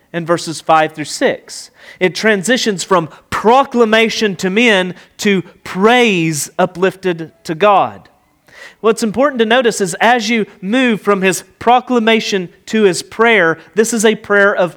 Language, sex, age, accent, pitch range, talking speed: English, male, 30-49, American, 160-220 Hz, 140 wpm